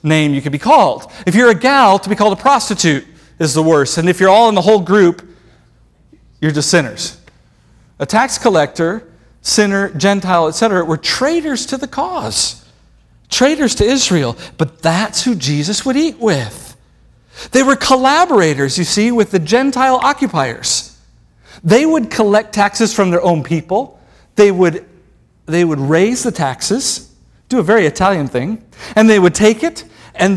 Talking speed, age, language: 165 wpm, 50-69, English